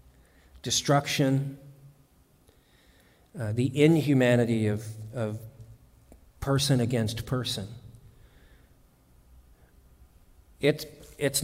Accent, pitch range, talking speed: American, 100-120 Hz, 50 wpm